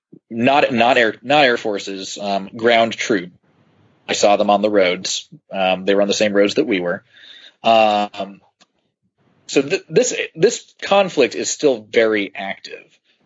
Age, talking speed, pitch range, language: 30-49, 160 wpm, 100-115 Hz, English